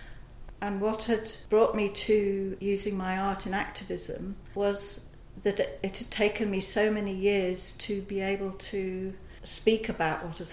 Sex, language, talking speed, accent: female, English, 160 wpm, British